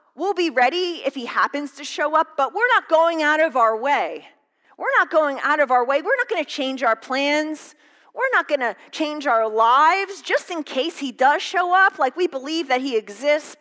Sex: female